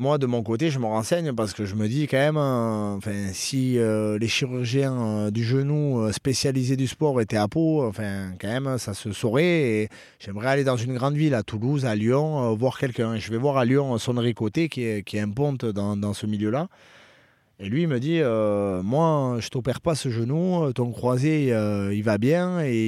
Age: 30-49